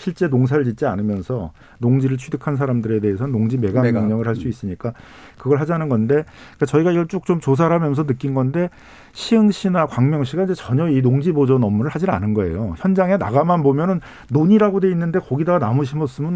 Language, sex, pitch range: Korean, male, 120-165 Hz